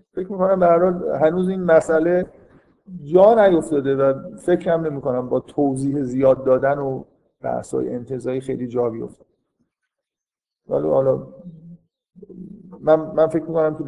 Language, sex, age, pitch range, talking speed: Persian, male, 50-69, 130-160 Hz, 120 wpm